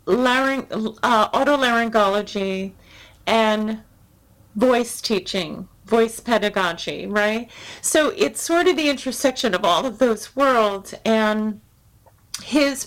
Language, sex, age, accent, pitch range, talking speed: English, female, 40-59, American, 205-250 Hz, 105 wpm